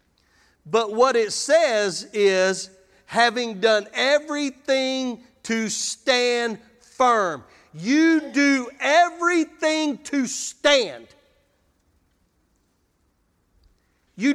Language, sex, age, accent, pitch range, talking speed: English, male, 40-59, American, 175-280 Hz, 70 wpm